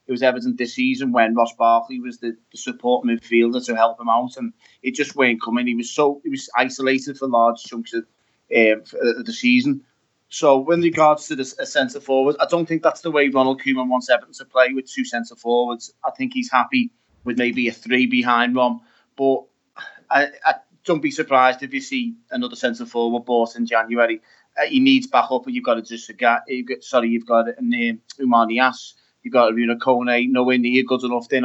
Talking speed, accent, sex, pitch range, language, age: 215 wpm, British, male, 120-155 Hz, English, 30-49